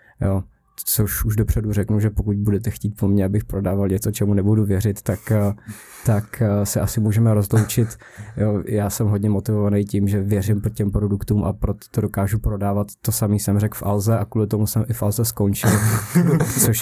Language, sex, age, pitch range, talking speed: Czech, male, 20-39, 100-110 Hz, 190 wpm